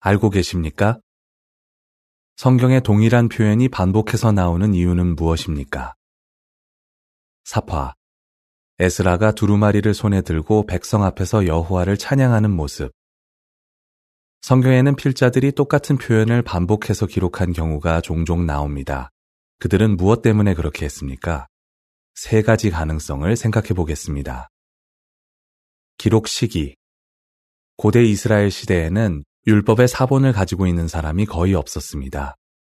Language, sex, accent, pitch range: Korean, male, native, 80-110 Hz